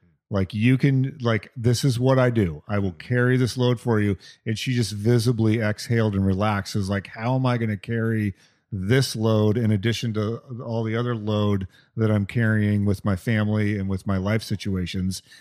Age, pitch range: 40-59, 105-130 Hz